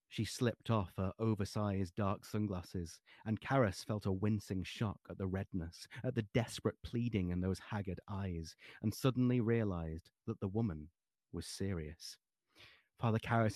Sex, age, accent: male, 30-49, British